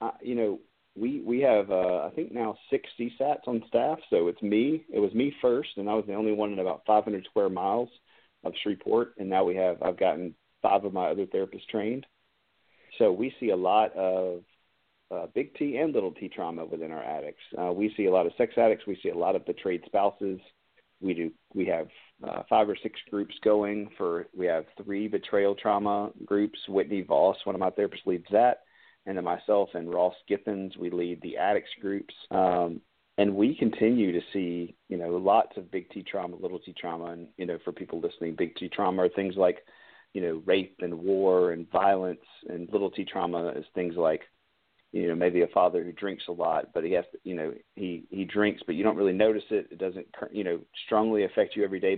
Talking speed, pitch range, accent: 215 wpm, 90-105 Hz, American